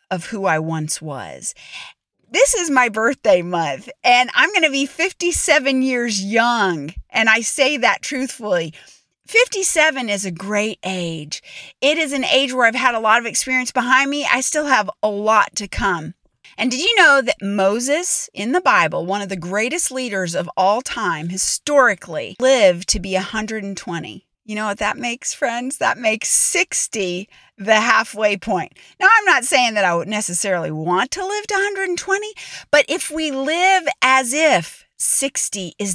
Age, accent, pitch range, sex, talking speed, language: 40-59, American, 205-305 Hz, female, 170 wpm, English